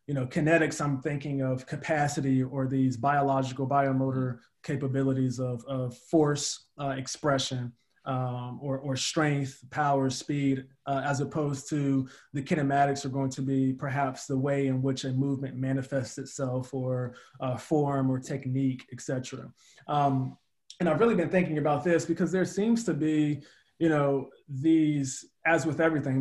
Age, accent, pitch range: 20-39, American, 135-155 Hz